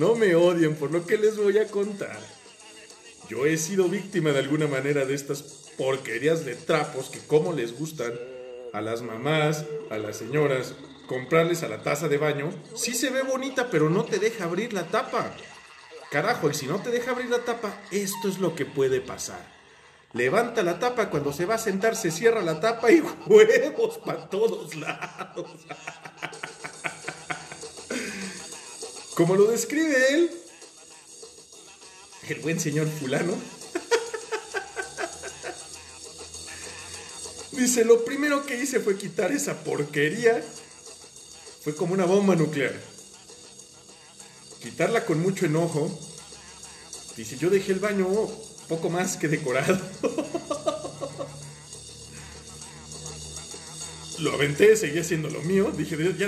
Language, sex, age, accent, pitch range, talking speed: Spanish, male, 40-59, Mexican, 145-225 Hz, 130 wpm